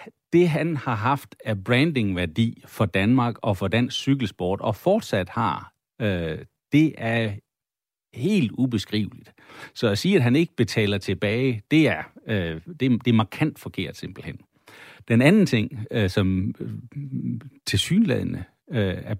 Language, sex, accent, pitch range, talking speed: Danish, male, native, 105-140 Hz, 125 wpm